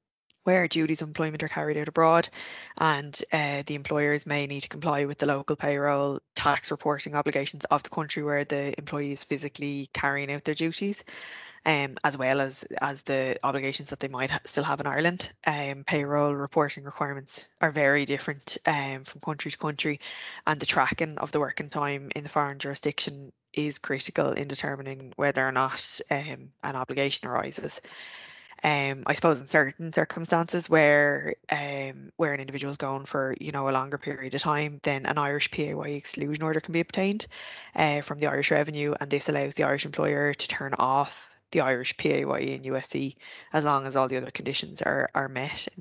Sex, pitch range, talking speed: female, 140-155 Hz, 190 wpm